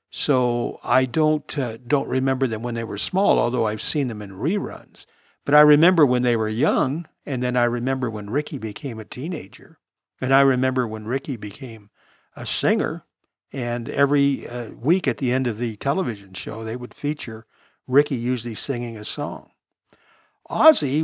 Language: English